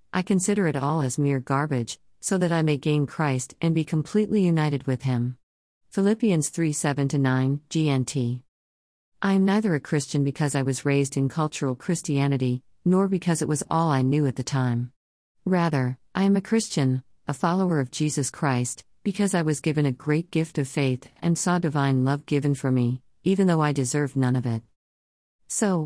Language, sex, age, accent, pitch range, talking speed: English, female, 50-69, American, 130-170 Hz, 185 wpm